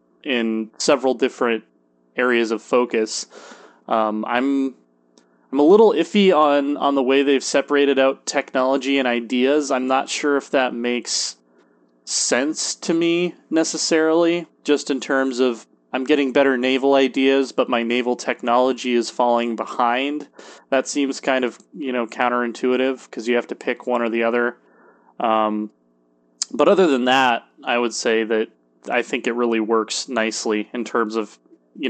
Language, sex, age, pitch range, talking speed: English, male, 20-39, 110-135 Hz, 155 wpm